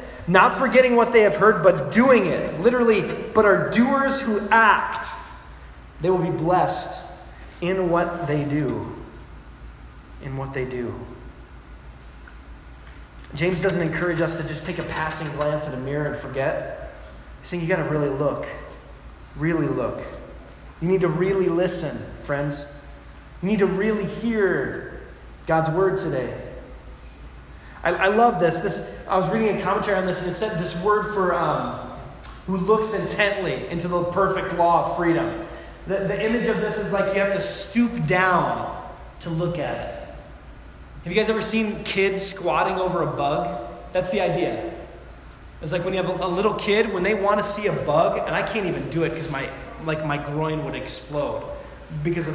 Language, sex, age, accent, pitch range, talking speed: English, male, 20-39, American, 145-200 Hz, 175 wpm